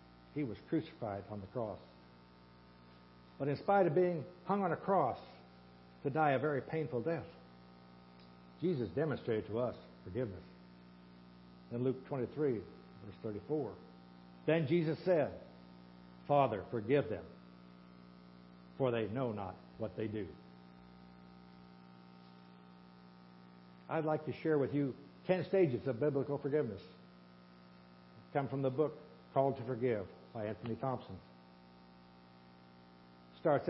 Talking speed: 120 wpm